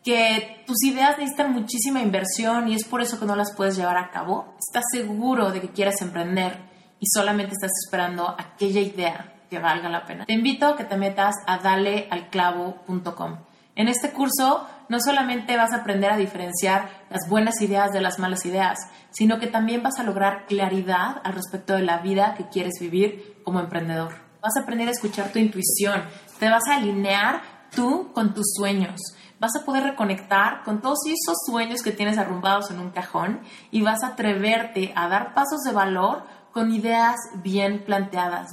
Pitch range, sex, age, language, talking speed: 185-230 Hz, female, 30-49, Spanish, 180 wpm